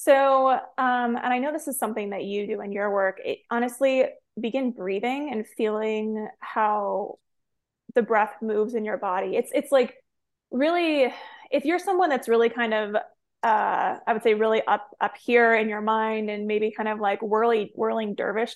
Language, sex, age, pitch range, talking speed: English, female, 20-39, 220-260 Hz, 180 wpm